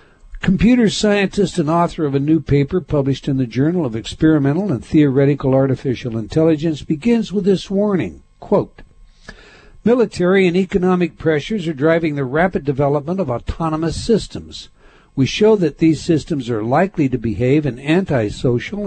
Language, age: English, 60-79